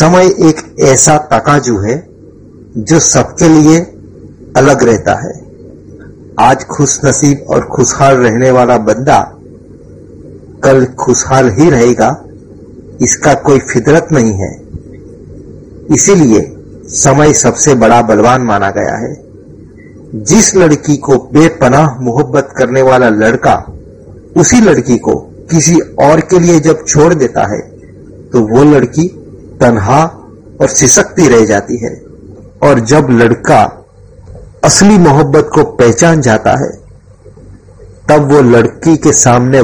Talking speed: 120 wpm